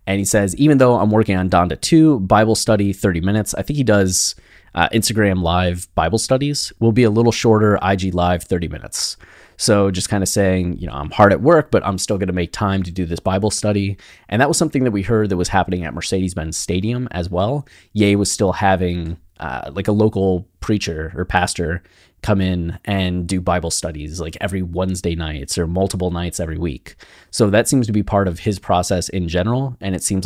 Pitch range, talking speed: 90-110 Hz, 220 wpm